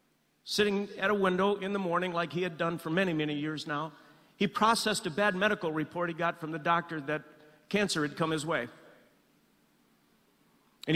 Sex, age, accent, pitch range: male, 50-69, American, 160-195 Hz